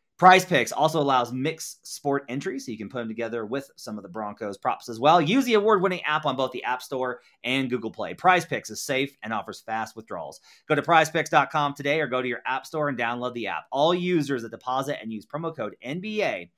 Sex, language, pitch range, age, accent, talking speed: male, English, 125-155 Hz, 30-49, American, 225 wpm